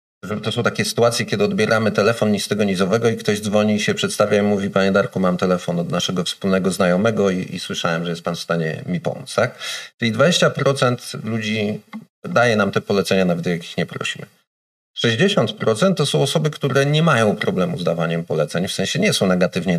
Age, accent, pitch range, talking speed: 40-59, native, 90-130 Hz, 205 wpm